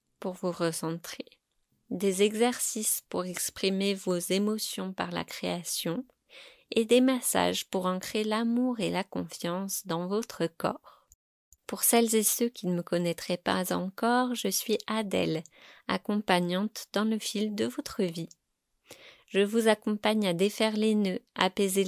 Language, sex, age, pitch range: French, female, 20-39, 175-220 Hz